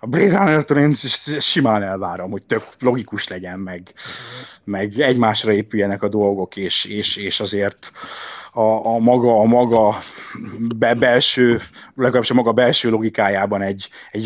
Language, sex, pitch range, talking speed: Hungarian, male, 105-135 Hz, 130 wpm